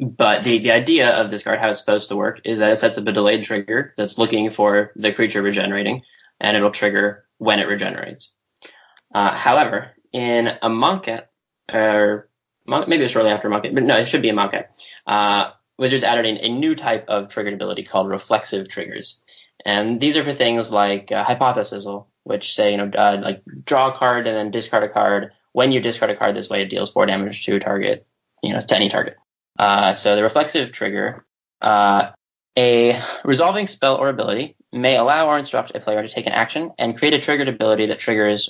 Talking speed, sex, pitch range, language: 205 wpm, male, 105-125 Hz, English